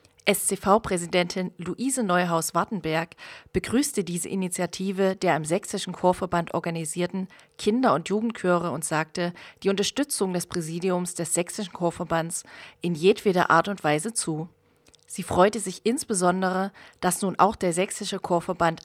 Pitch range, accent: 175-200 Hz, German